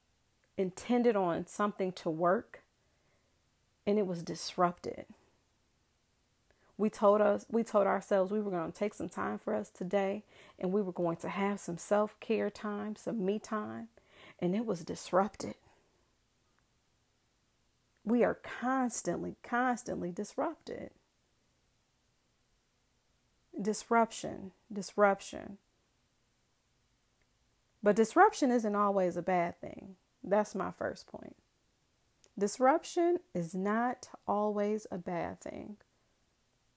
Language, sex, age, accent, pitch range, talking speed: English, female, 40-59, American, 185-230 Hz, 110 wpm